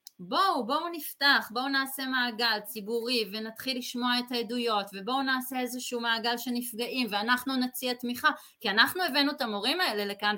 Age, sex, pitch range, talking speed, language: 30-49, female, 210-265 Hz, 155 wpm, Hebrew